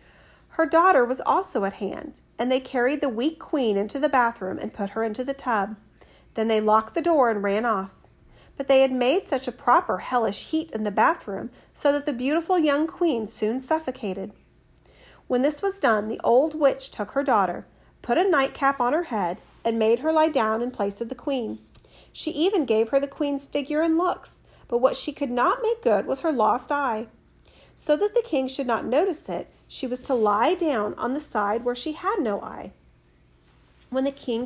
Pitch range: 215-295 Hz